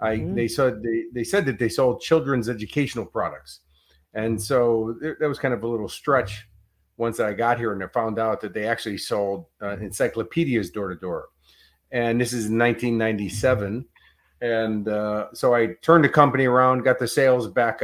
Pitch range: 110-130 Hz